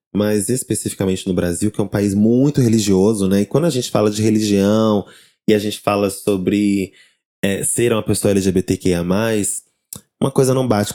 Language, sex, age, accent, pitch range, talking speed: Portuguese, male, 20-39, Brazilian, 100-130 Hz, 170 wpm